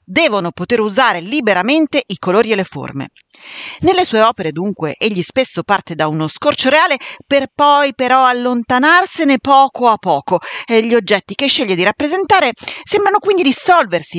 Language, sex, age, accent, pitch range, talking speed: Italian, female, 40-59, native, 170-250 Hz, 155 wpm